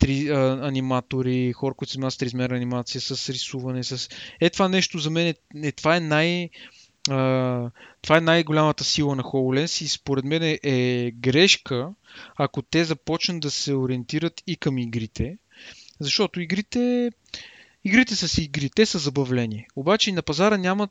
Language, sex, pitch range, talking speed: Bulgarian, male, 135-185 Hz, 145 wpm